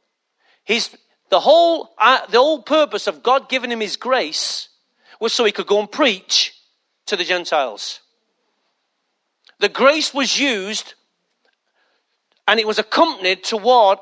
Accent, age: British, 40-59